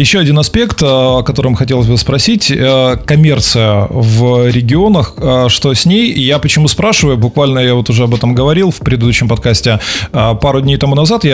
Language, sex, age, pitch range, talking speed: Russian, male, 20-39, 120-150 Hz, 170 wpm